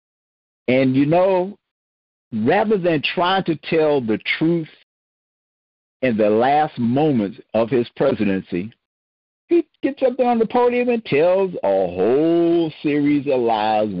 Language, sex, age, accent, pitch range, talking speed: English, male, 60-79, American, 105-170 Hz, 135 wpm